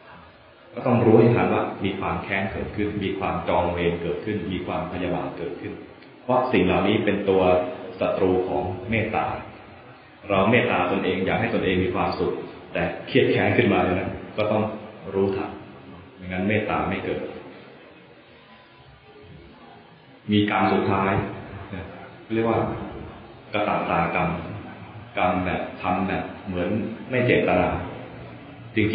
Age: 20-39